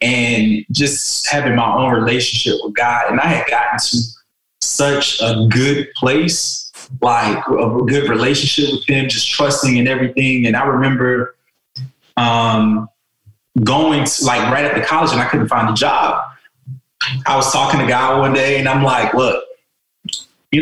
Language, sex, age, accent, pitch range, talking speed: English, male, 20-39, American, 115-145 Hz, 165 wpm